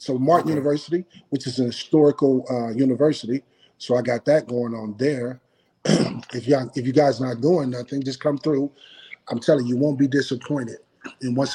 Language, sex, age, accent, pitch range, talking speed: English, male, 30-49, American, 120-140 Hz, 190 wpm